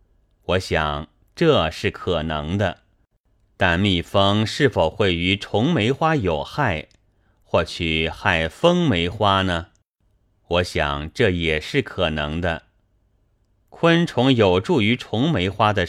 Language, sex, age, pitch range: Chinese, male, 30-49, 90-120 Hz